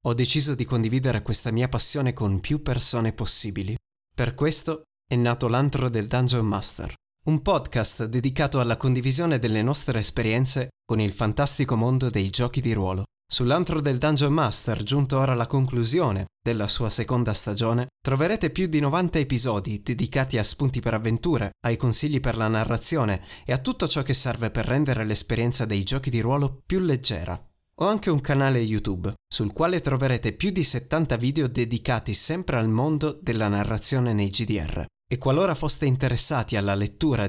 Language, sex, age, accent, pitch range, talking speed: Italian, male, 30-49, native, 110-140 Hz, 165 wpm